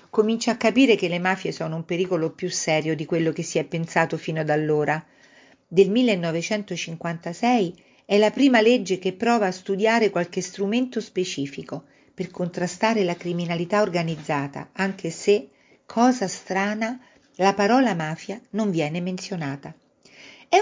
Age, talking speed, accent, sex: 50-69, 145 wpm, native, female